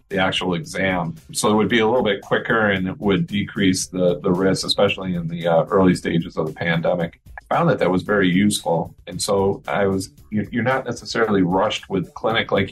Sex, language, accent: male, Portuguese, American